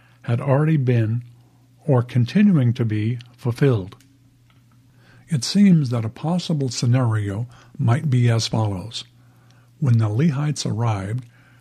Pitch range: 120-135 Hz